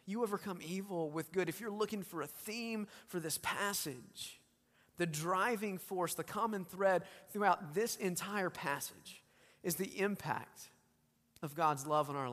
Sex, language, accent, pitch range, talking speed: male, English, American, 135-175 Hz, 155 wpm